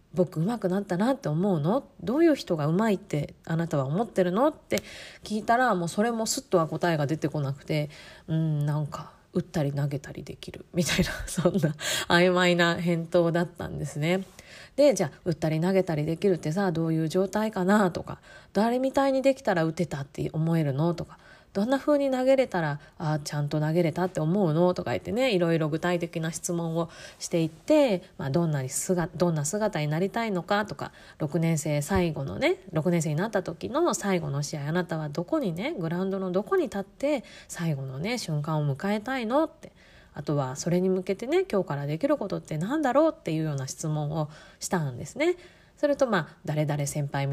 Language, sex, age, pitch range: Japanese, female, 20-39, 155-195 Hz